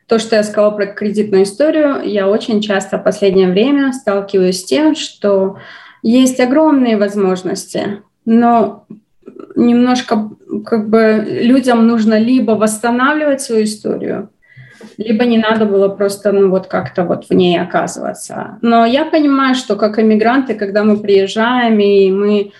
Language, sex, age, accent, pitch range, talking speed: Russian, female, 20-39, native, 200-230 Hz, 130 wpm